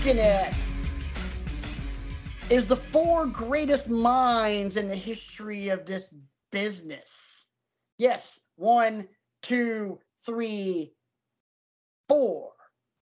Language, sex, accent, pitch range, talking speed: English, male, American, 190-235 Hz, 80 wpm